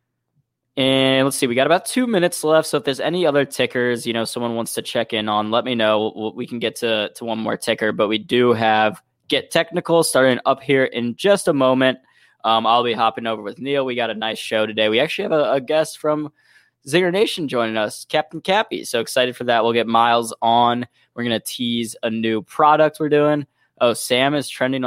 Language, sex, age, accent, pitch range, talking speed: English, male, 10-29, American, 115-140 Hz, 225 wpm